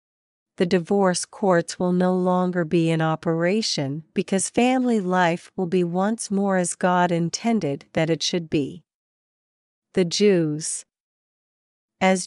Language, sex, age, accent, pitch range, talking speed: English, female, 50-69, American, 175-205 Hz, 125 wpm